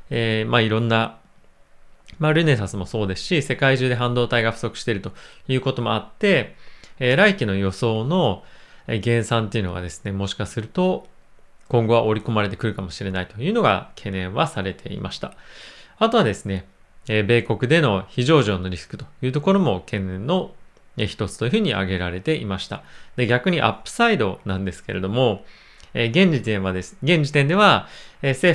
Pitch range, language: 100-145 Hz, Japanese